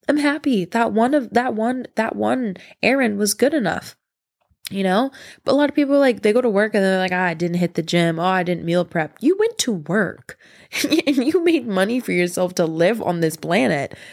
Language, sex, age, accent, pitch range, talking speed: English, female, 20-39, American, 170-235 Hz, 230 wpm